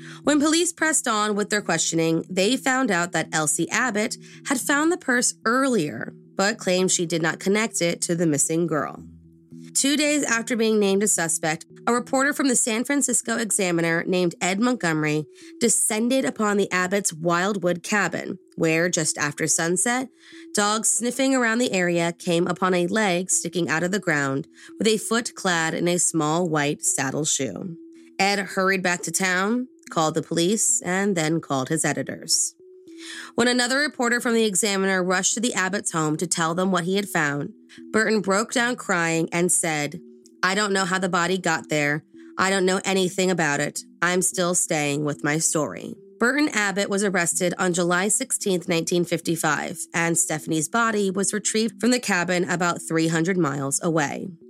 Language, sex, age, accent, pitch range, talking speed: English, female, 20-39, American, 165-220 Hz, 175 wpm